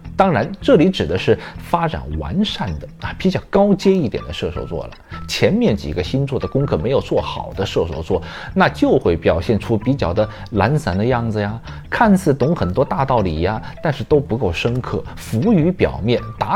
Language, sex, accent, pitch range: Chinese, male, native, 85-135 Hz